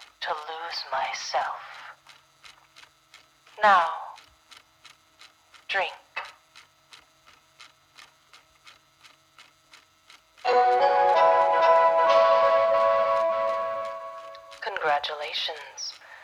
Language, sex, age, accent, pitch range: English, female, 30-49, American, 150-210 Hz